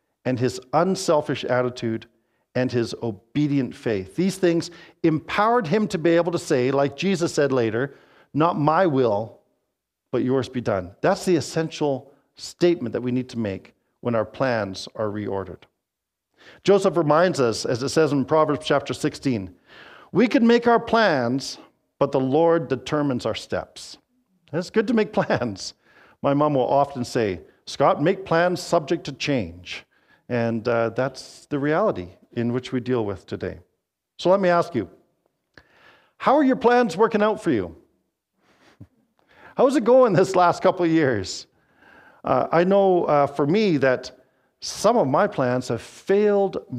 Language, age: English, 50-69